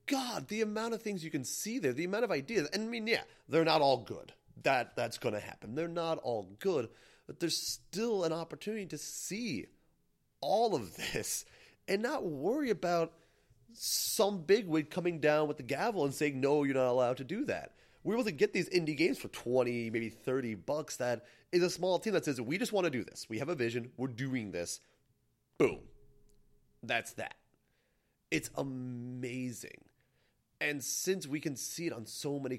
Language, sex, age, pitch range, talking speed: English, male, 30-49, 115-160 Hz, 195 wpm